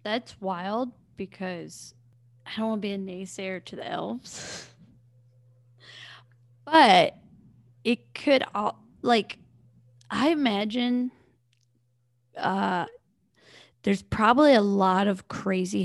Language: English